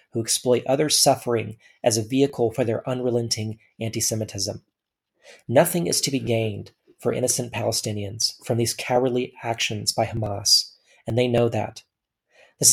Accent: American